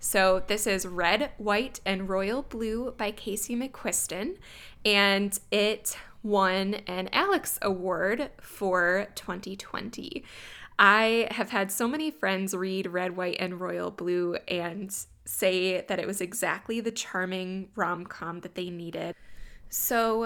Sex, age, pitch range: female, 20-39, 180-215 Hz